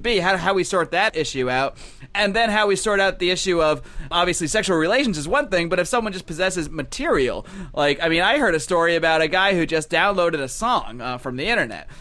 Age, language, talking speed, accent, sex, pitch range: 30-49, English, 240 wpm, American, male, 155-200 Hz